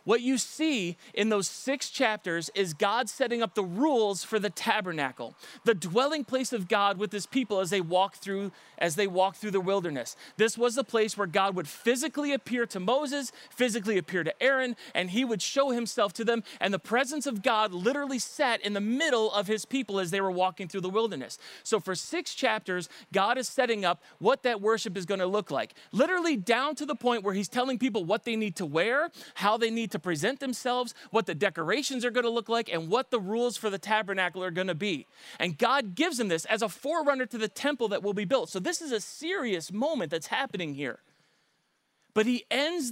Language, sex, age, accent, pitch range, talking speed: English, male, 30-49, American, 195-255 Hz, 220 wpm